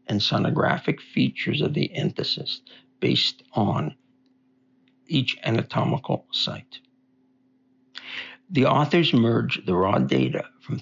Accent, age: American, 60-79